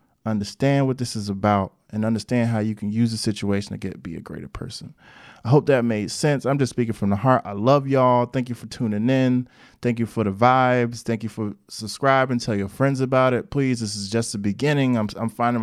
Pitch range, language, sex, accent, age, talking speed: 110-135 Hz, English, male, American, 20-39, 235 wpm